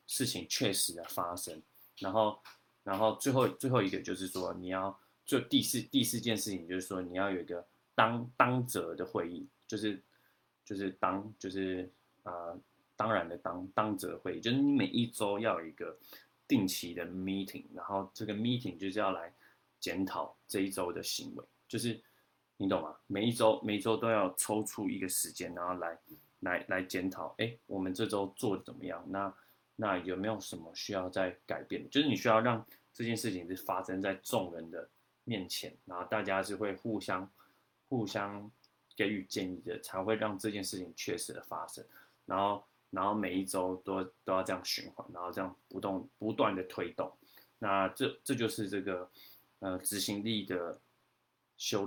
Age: 20-39